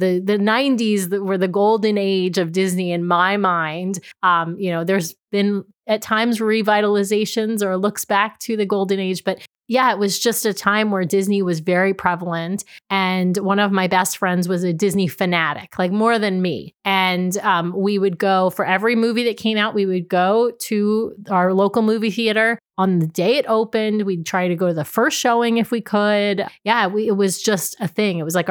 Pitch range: 185-220 Hz